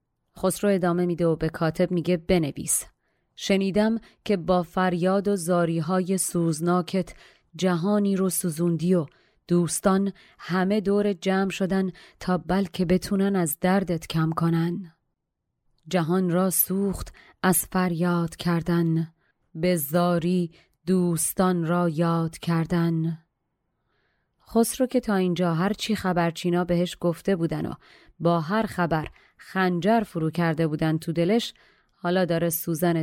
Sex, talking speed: female, 120 wpm